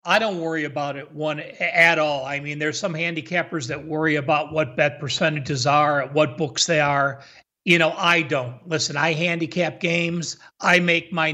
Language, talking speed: English, 185 wpm